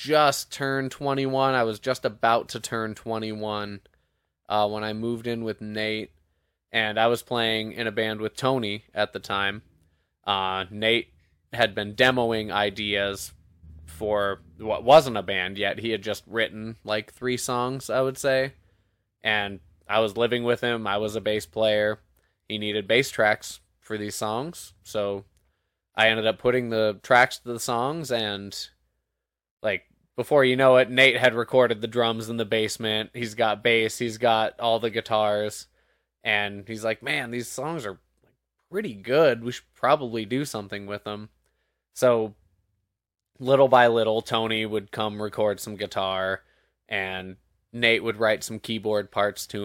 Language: English